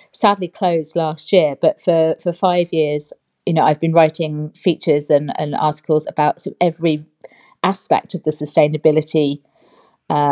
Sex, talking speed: female, 145 wpm